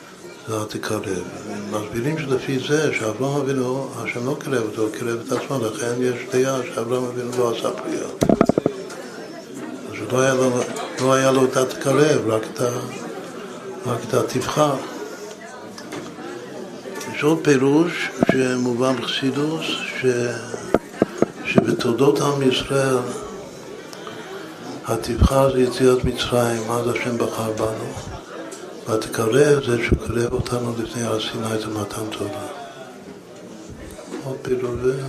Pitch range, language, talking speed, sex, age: 115-135 Hz, Hebrew, 95 wpm, male, 60-79